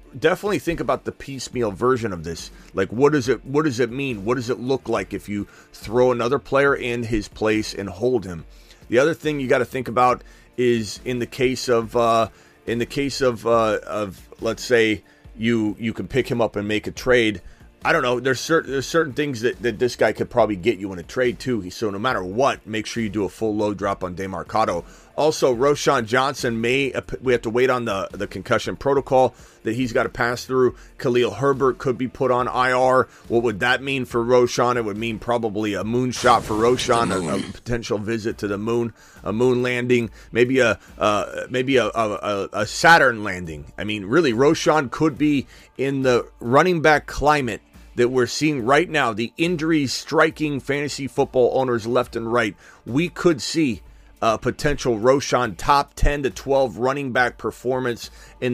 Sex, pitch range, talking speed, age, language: male, 110-130 Hz, 205 wpm, 30-49, English